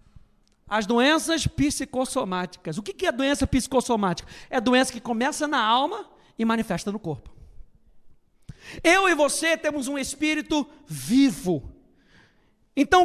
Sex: male